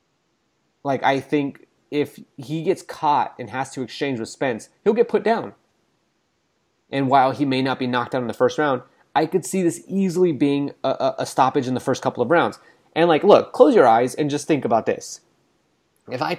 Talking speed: 210 wpm